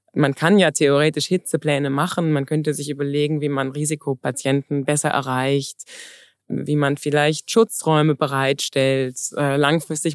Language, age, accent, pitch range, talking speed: German, 20-39, German, 145-170 Hz, 125 wpm